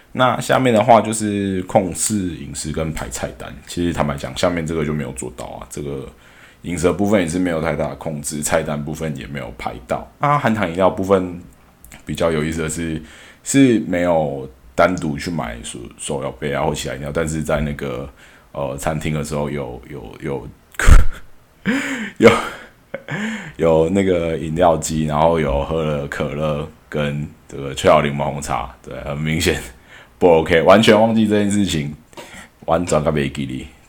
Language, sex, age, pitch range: Chinese, male, 20-39, 70-90 Hz